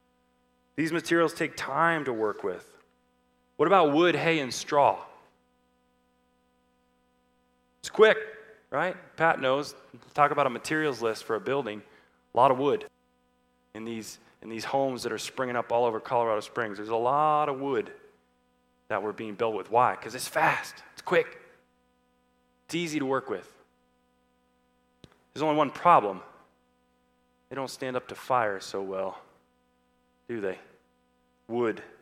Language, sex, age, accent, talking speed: English, male, 20-39, American, 150 wpm